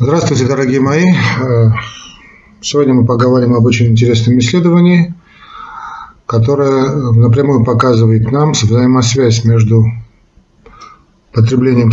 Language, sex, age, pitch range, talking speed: Russian, male, 50-69, 115-140 Hz, 85 wpm